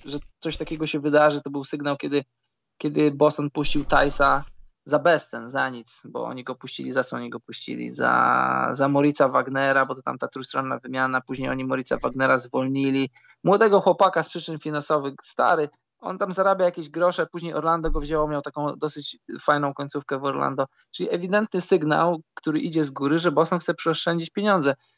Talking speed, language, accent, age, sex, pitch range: 180 wpm, Polish, native, 20-39, male, 145-170 Hz